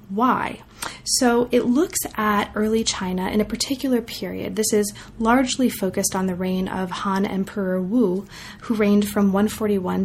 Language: English